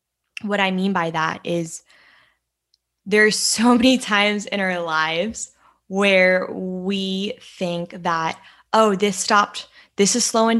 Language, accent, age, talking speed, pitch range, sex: English, American, 10-29, 130 wpm, 185-215 Hz, female